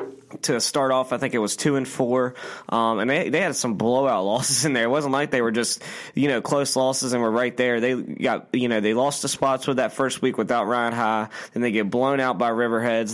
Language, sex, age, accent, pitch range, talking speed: English, male, 20-39, American, 115-130 Hz, 255 wpm